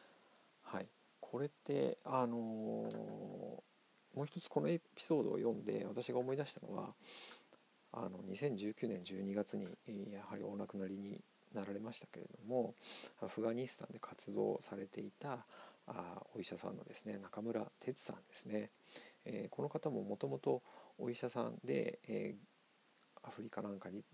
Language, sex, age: Japanese, male, 50-69